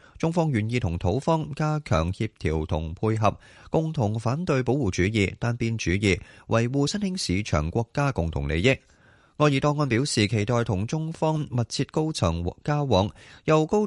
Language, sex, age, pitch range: Chinese, male, 20-39, 95-140 Hz